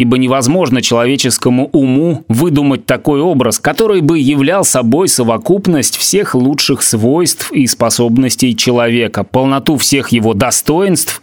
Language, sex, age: Russian, male, 30-49